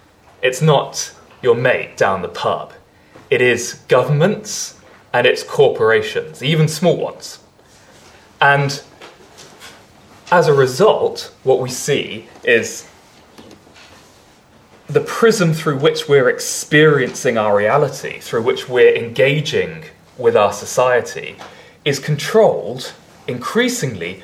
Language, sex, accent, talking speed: English, male, British, 105 wpm